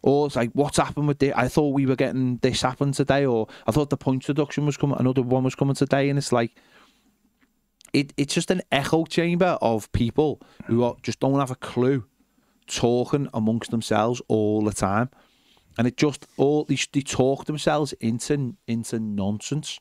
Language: English